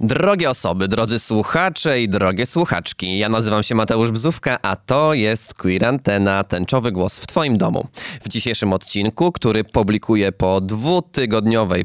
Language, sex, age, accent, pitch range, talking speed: Polish, male, 20-39, native, 100-120 Hz, 140 wpm